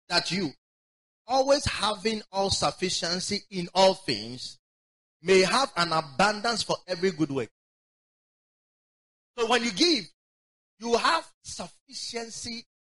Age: 30-49